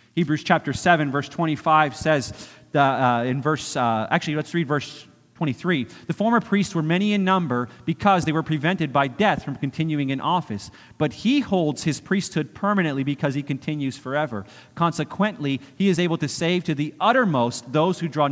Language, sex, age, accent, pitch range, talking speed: English, male, 40-59, American, 135-175 Hz, 175 wpm